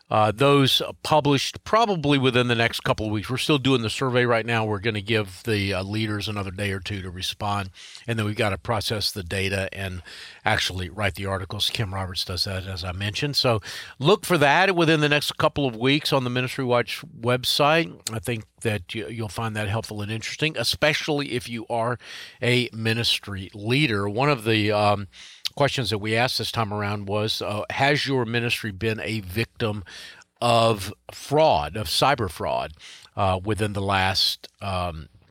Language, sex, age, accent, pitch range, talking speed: English, male, 50-69, American, 105-135 Hz, 185 wpm